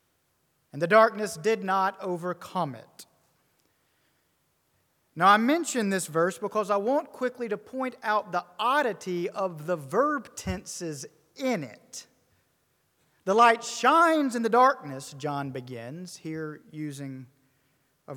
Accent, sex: American, male